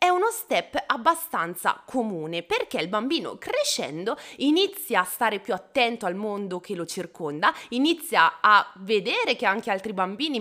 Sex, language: female, Italian